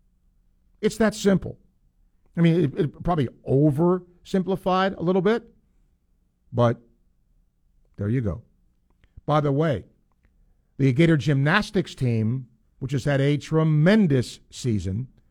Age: 50-69